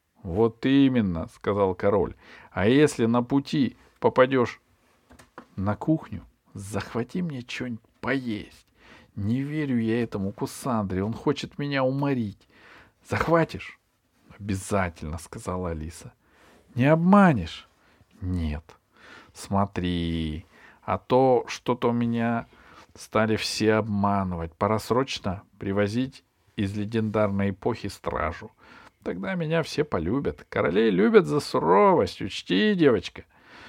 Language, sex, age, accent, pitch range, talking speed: Russian, male, 50-69, native, 100-140 Hz, 100 wpm